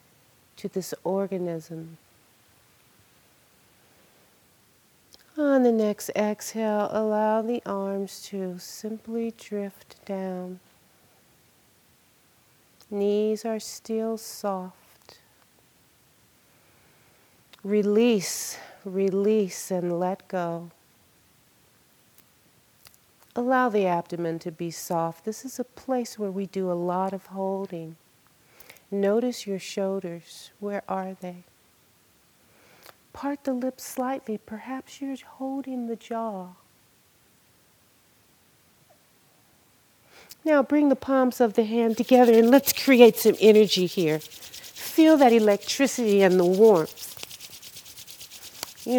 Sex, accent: female, American